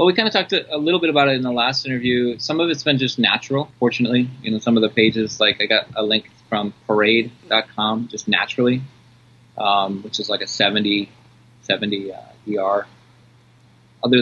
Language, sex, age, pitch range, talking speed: English, male, 20-39, 105-125 Hz, 195 wpm